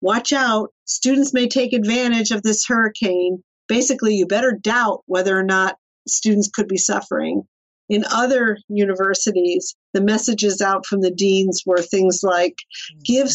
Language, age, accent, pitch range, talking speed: English, 50-69, American, 185-220 Hz, 150 wpm